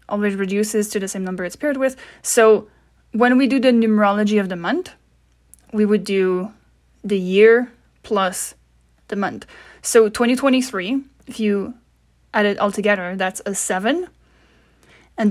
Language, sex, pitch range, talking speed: English, female, 185-225 Hz, 150 wpm